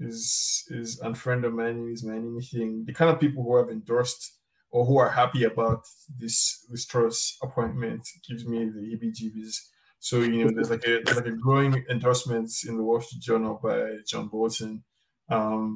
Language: English